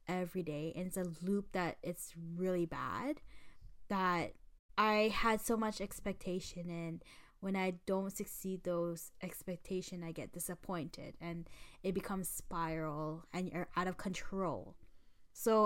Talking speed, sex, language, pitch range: 140 wpm, female, English, 175-205 Hz